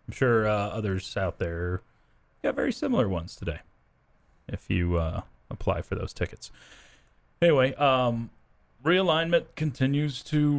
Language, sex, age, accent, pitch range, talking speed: English, male, 30-49, American, 95-120 Hz, 130 wpm